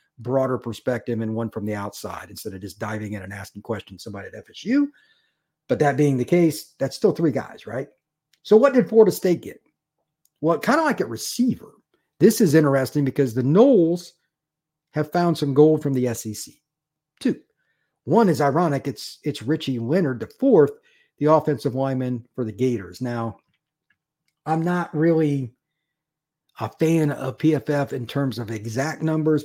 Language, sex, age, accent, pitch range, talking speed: English, male, 50-69, American, 125-155 Hz, 165 wpm